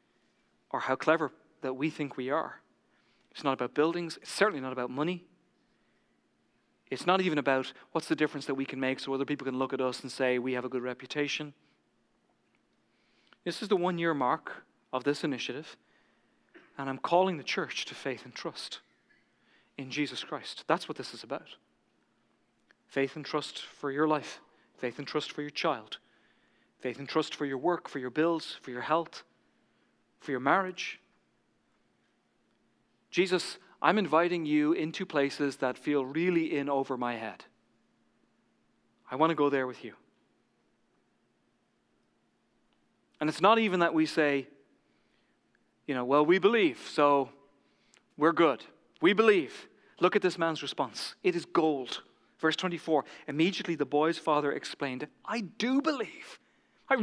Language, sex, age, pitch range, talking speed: English, male, 40-59, 135-170 Hz, 160 wpm